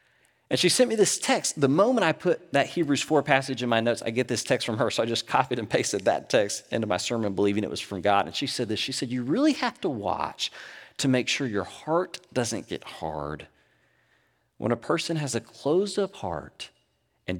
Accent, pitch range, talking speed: American, 95-130 Hz, 230 wpm